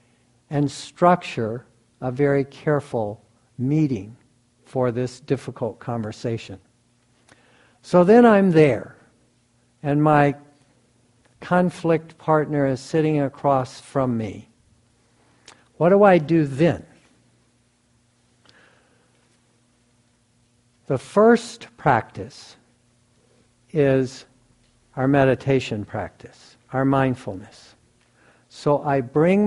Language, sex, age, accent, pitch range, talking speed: English, male, 60-79, American, 120-150 Hz, 80 wpm